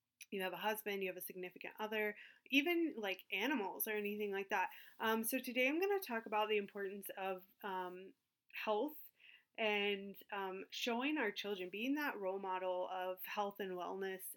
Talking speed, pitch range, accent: 175 wpm, 195-225 Hz, American